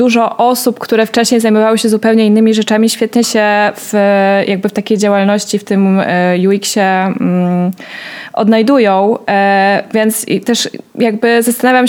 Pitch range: 205-240 Hz